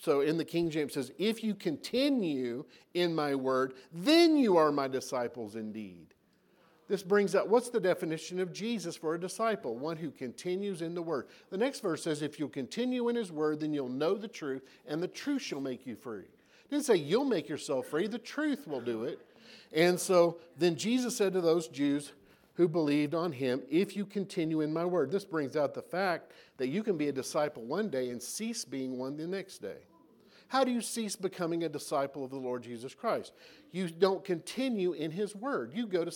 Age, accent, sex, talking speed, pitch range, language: 50-69, American, male, 210 wpm, 145-205 Hz, English